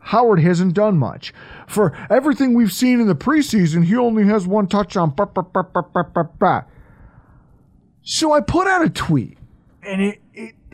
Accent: American